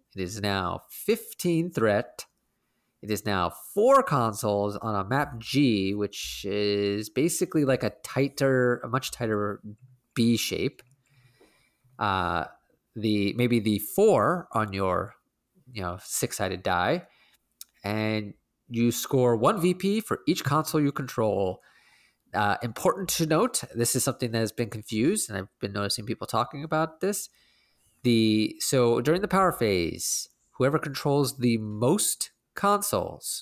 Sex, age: male, 30-49